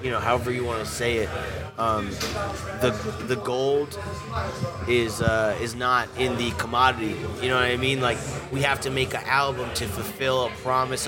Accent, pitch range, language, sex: American, 115-135 Hz, English, male